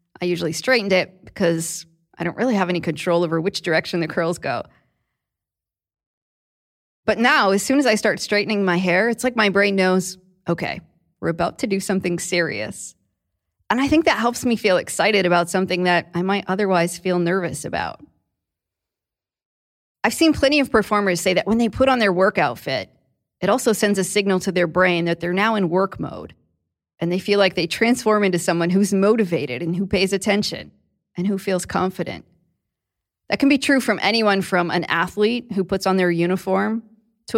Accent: American